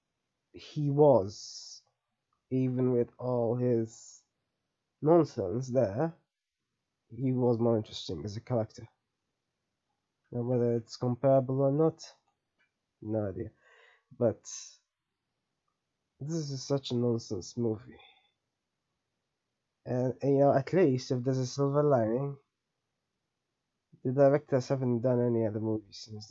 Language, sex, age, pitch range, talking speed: English, male, 20-39, 110-130 Hz, 110 wpm